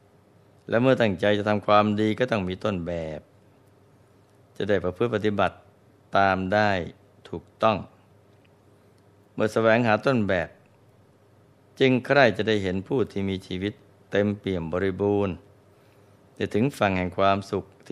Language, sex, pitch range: Thai, male, 100-110 Hz